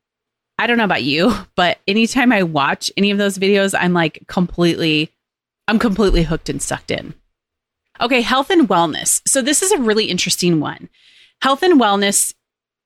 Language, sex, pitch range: English, female, 170-225 Hz